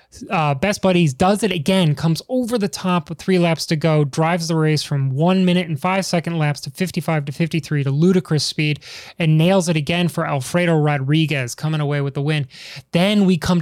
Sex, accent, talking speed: male, American, 205 wpm